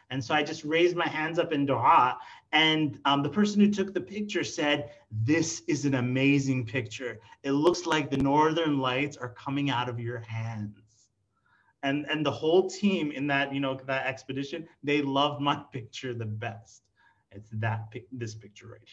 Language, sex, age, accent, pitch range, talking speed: English, male, 30-49, American, 135-180 Hz, 185 wpm